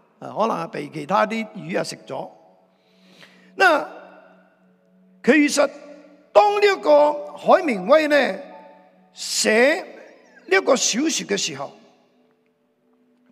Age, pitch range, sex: 50-69, 165-265 Hz, male